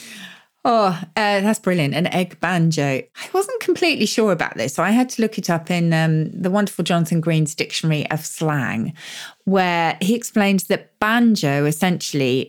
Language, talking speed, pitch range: English, 170 wpm, 155-195 Hz